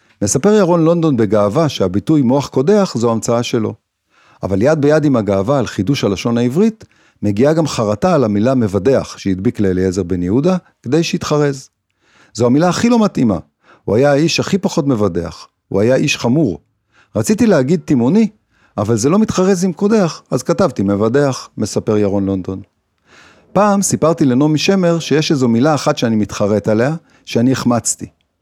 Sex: male